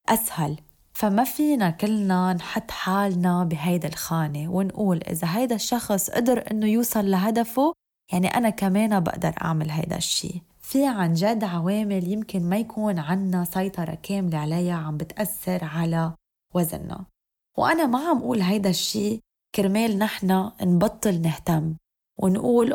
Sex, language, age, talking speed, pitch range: female, Arabic, 20-39, 130 wpm, 180-220 Hz